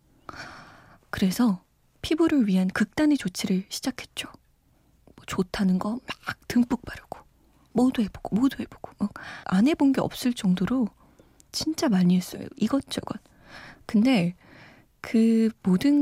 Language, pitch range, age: Korean, 195-275 Hz, 20-39